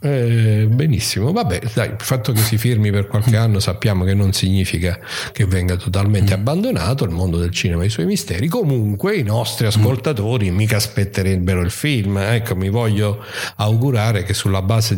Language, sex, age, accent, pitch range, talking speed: Italian, male, 50-69, native, 95-120 Hz, 170 wpm